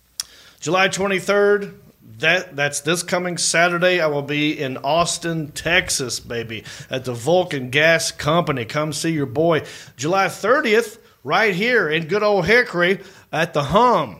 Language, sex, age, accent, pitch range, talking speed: English, male, 40-59, American, 135-175 Hz, 140 wpm